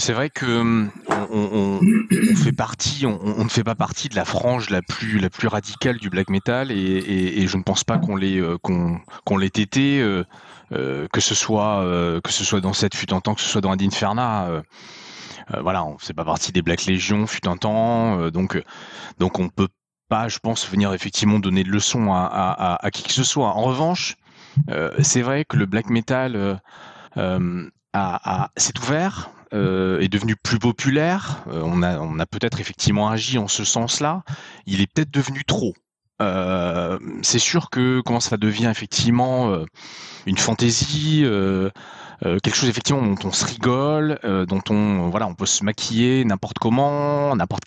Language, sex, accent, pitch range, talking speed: French, male, French, 95-130 Hz, 200 wpm